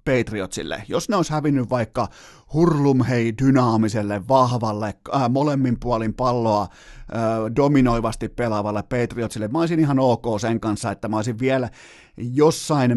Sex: male